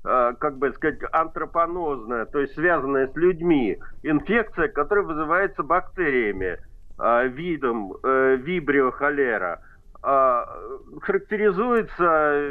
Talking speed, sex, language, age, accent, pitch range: 75 wpm, male, Russian, 50-69, native, 150-215 Hz